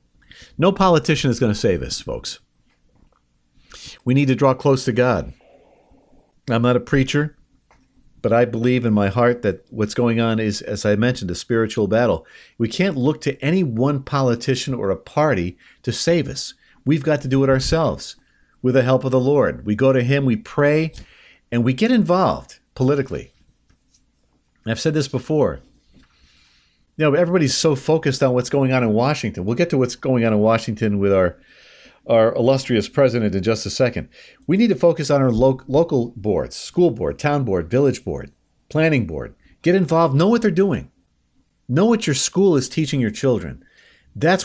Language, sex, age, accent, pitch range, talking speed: English, male, 50-69, American, 110-145 Hz, 185 wpm